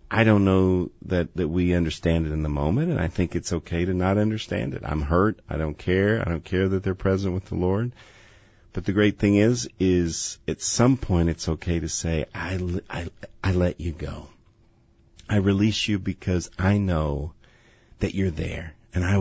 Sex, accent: male, American